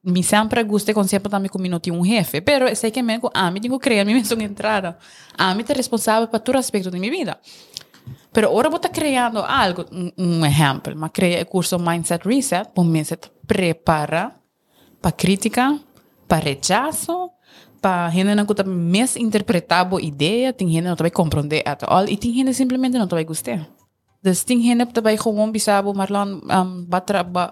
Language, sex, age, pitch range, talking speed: English, female, 20-39, 175-230 Hz, 190 wpm